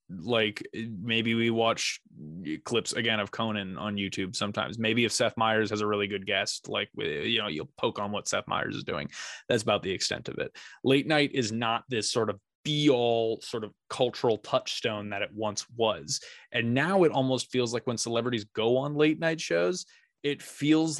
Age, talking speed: 20-39, 195 wpm